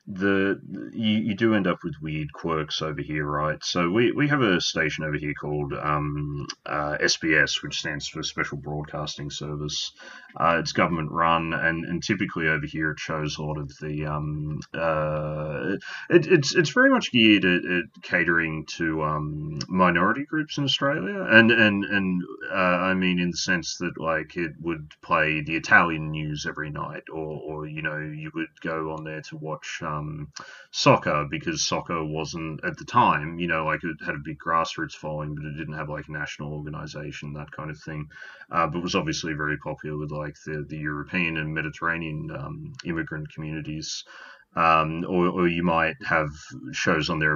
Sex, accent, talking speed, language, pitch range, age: male, Australian, 185 wpm, English, 75-90 Hz, 30-49